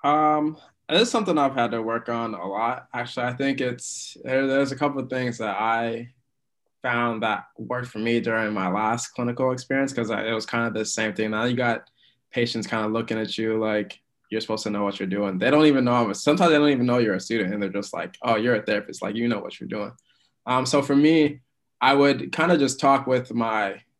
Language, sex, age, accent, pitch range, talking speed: English, male, 20-39, American, 105-125 Hz, 240 wpm